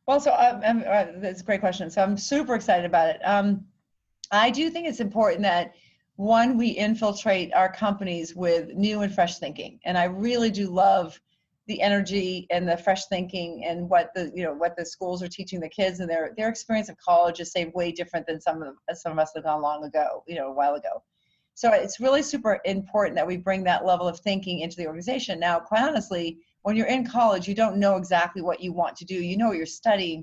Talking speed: 225 wpm